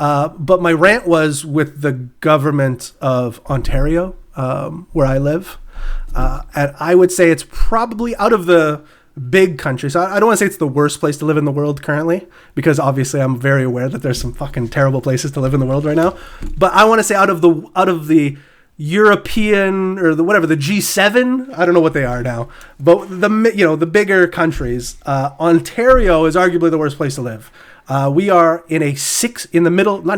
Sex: male